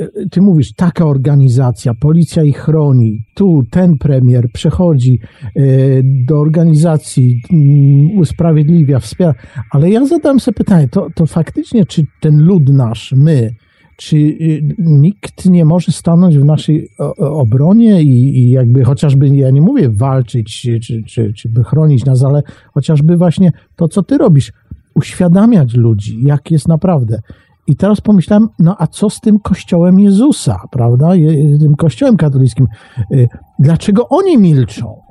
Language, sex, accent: Polish, male, native